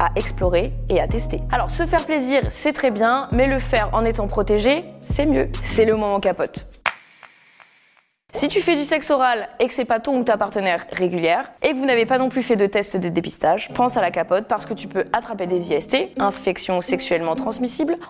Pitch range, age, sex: 205-265 Hz, 20-39, female